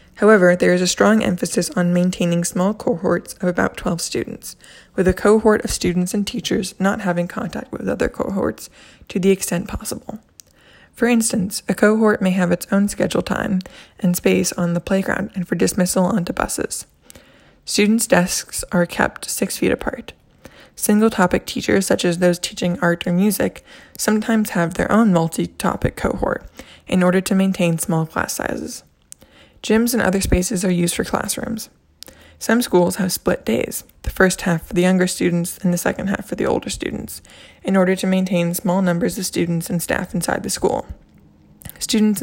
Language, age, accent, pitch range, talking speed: English, 20-39, American, 175-210 Hz, 175 wpm